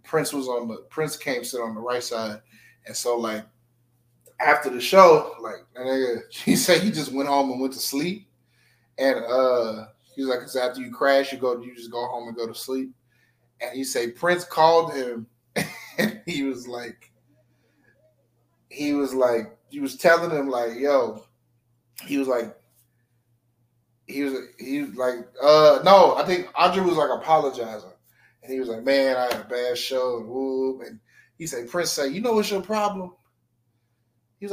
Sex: male